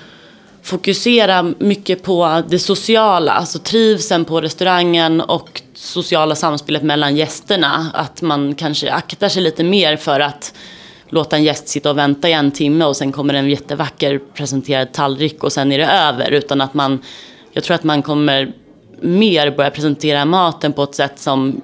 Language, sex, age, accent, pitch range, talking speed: Swedish, female, 30-49, native, 140-165 Hz, 165 wpm